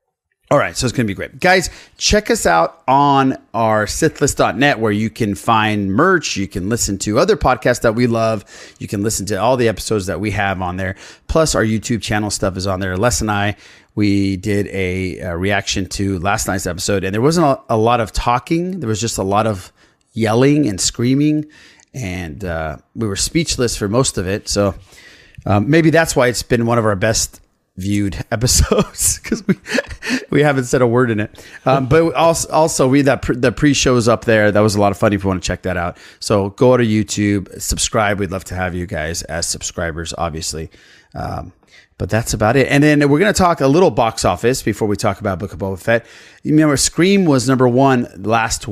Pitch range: 100-130 Hz